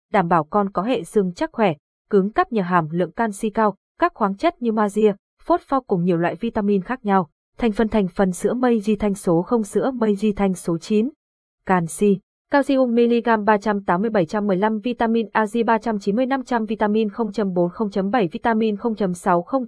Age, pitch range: 20-39, 190-235 Hz